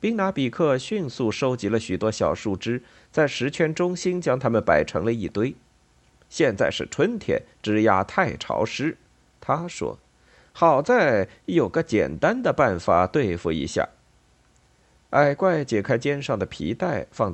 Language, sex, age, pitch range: Chinese, male, 50-69, 105-160 Hz